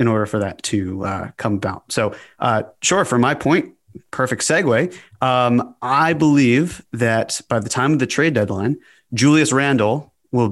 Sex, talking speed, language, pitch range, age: male, 170 wpm, English, 115-135 Hz, 30-49